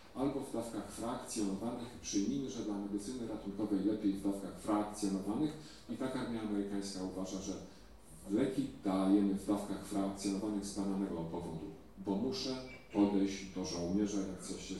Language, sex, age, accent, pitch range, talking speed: Polish, male, 40-59, native, 95-120 Hz, 145 wpm